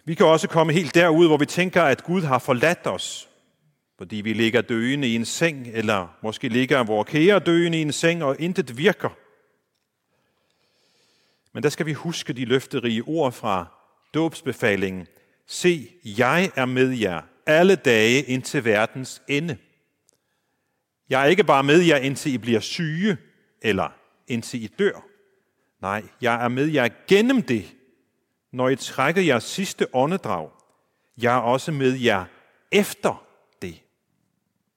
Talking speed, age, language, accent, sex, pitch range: 150 wpm, 40-59, Danish, native, male, 120-175 Hz